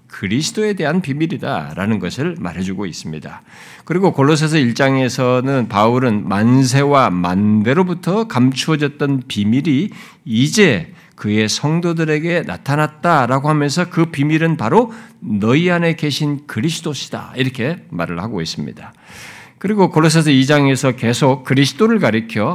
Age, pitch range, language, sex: 50-69, 125-180 Hz, Korean, male